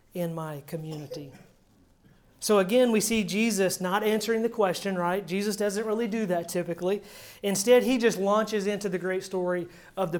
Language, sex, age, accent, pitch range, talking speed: English, male, 30-49, American, 185-220 Hz, 170 wpm